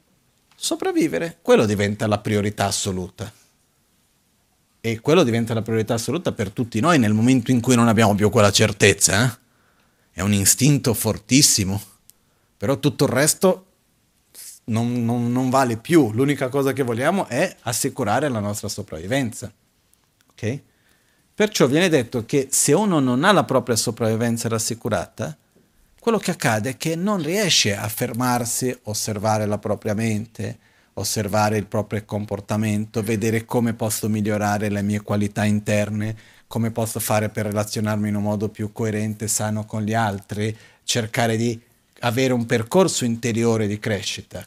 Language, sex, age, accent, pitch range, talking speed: Italian, male, 40-59, native, 105-125 Hz, 145 wpm